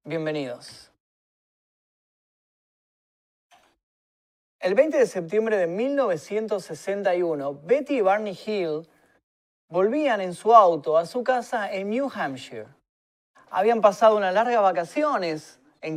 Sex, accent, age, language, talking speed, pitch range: male, Argentinian, 30-49, Spanish, 100 wpm, 160-245 Hz